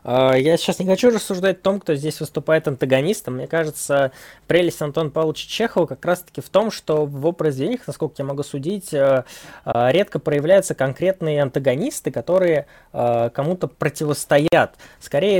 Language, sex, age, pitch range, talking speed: Russian, male, 20-39, 140-180 Hz, 145 wpm